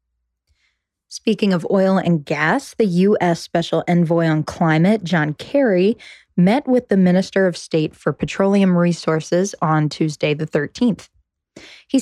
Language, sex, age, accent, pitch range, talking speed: English, female, 10-29, American, 155-195 Hz, 135 wpm